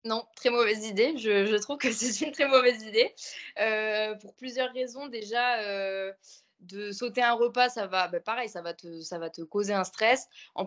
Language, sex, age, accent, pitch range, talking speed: French, female, 20-39, French, 185-235 Hz, 210 wpm